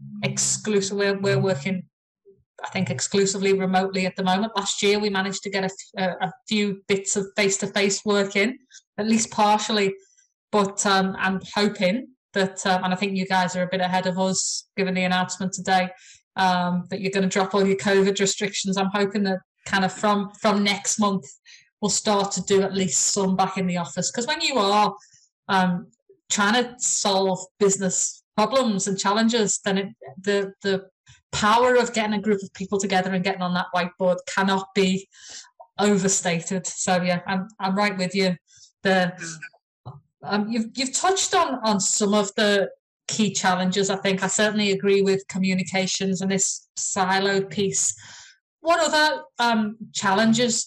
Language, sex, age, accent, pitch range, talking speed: English, female, 20-39, British, 190-210 Hz, 170 wpm